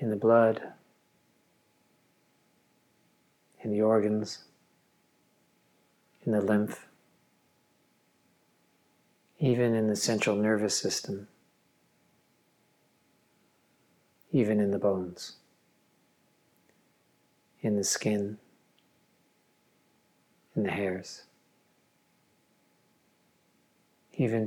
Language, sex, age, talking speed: English, male, 40-59, 65 wpm